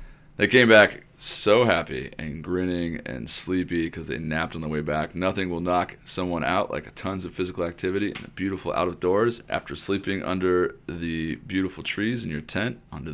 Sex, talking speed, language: male, 185 wpm, English